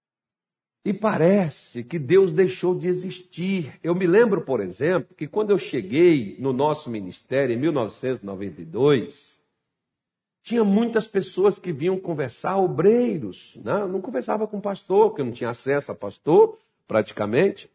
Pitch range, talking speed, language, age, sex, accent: 125-210 Hz, 145 wpm, Portuguese, 60-79, male, Brazilian